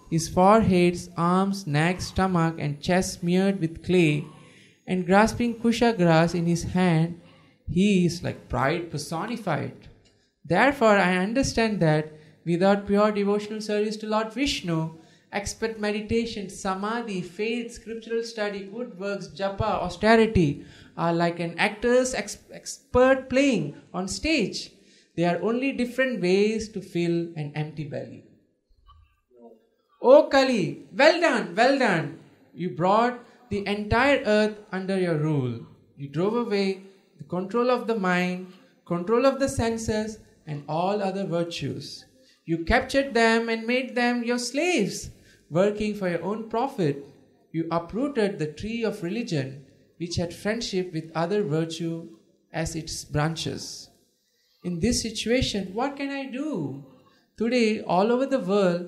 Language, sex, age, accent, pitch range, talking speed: English, male, 20-39, Indian, 165-225 Hz, 135 wpm